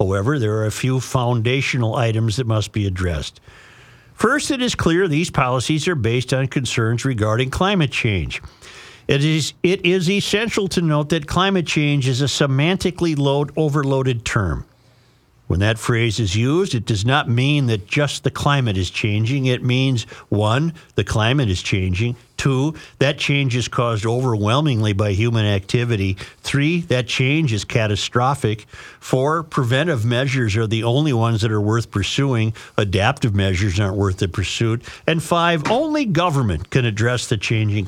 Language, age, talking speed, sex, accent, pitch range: English, 50-69, 155 wpm, male, American, 110-145 Hz